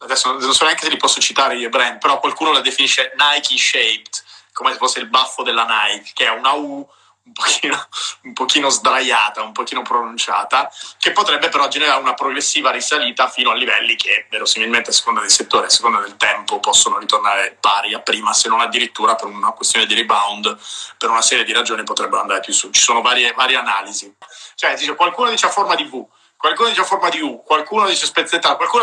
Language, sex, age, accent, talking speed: Italian, male, 30-49, native, 205 wpm